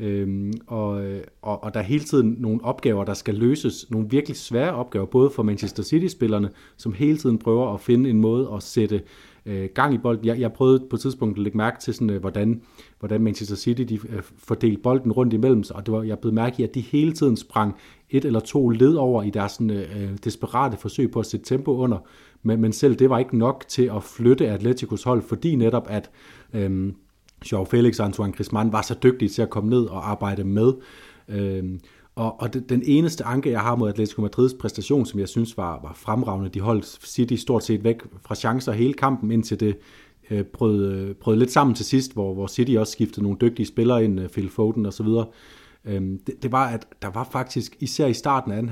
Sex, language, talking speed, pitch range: male, Danish, 220 wpm, 105-125 Hz